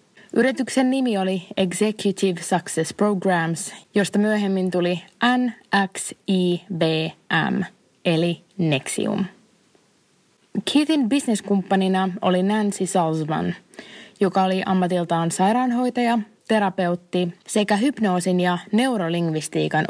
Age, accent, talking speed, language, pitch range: 20-39, native, 80 wpm, Finnish, 175-215 Hz